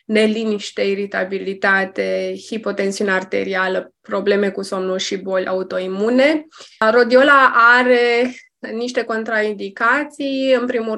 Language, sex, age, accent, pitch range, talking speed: Romanian, female, 20-39, native, 195-245 Hz, 85 wpm